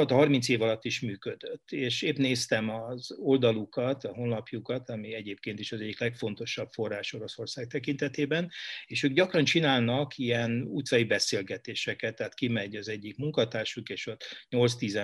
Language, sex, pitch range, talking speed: Hungarian, male, 115-135 Hz, 150 wpm